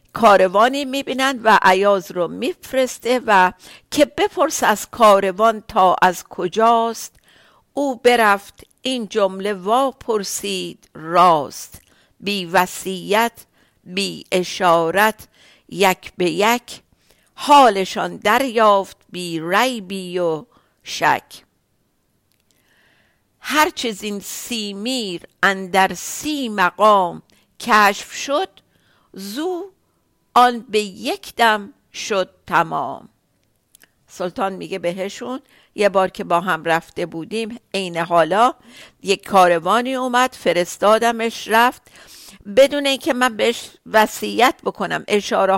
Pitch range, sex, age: 190-250 Hz, female, 50-69